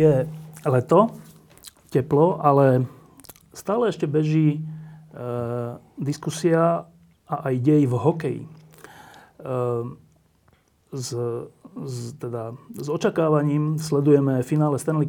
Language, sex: Slovak, male